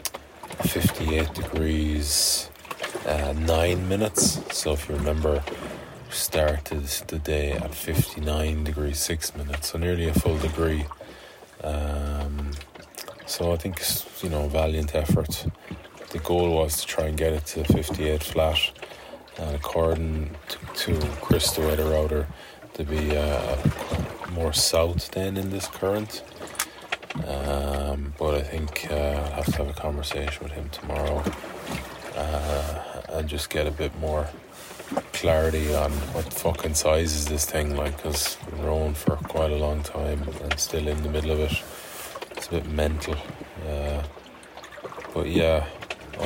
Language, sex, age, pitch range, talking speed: English, male, 20-39, 75-80 Hz, 145 wpm